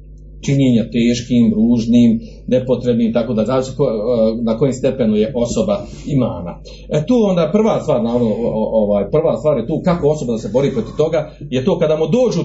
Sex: male